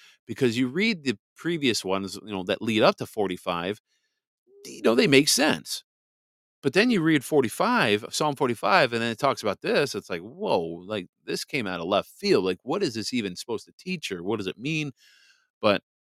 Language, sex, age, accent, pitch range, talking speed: English, male, 40-59, American, 105-140 Hz, 205 wpm